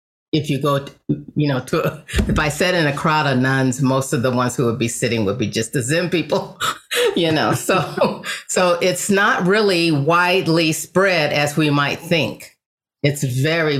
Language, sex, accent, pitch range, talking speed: English, female, American, 140-175 Hz, 190 wpm